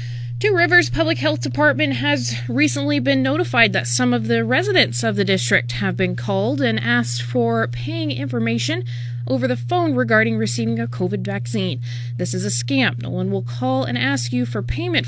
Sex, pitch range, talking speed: female, 105-125 Hz, 185 wpm